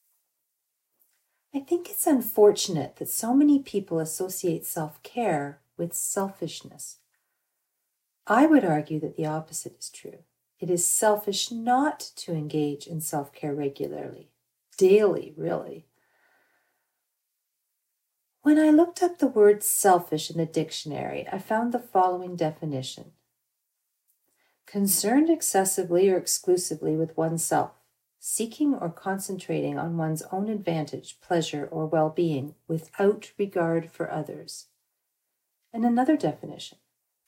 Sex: female